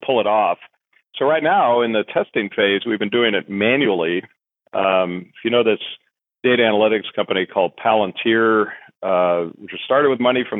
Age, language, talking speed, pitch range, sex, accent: 40-59, English, 175 wpm, 95-115 Hz, male, American